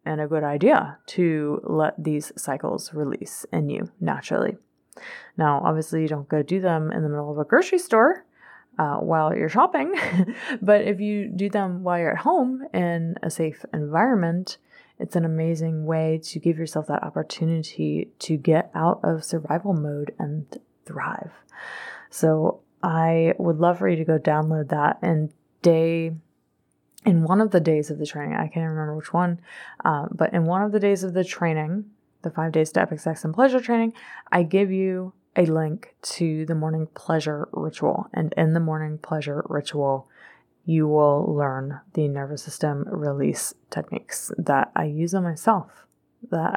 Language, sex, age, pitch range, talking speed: English, female, 20-39, 155-185 Hz, 175 wpm